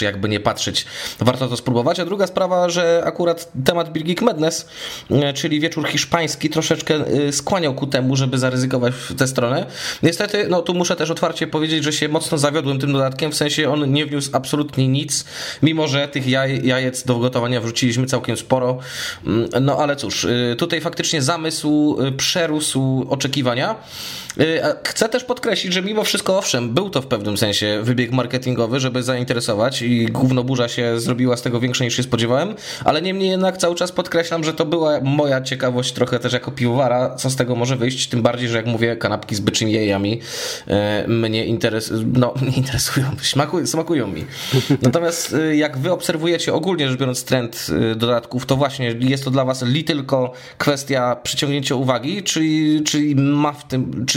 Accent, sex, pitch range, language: native, male, 125-155 Hz, Polish